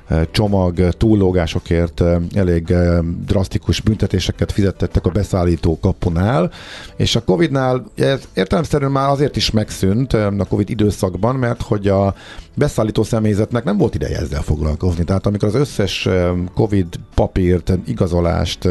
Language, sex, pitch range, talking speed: Hungarian, male, 90-115 Hz, 120 wpm